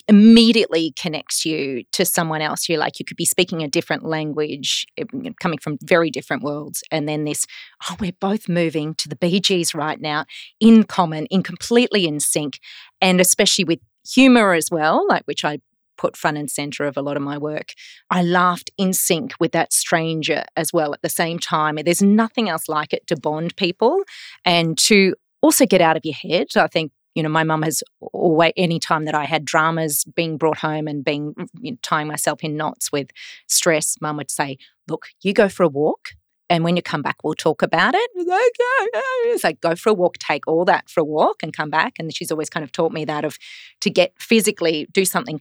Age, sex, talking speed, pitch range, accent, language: 30-49, female, 210 wpm, 155-190 Hz, Australian, English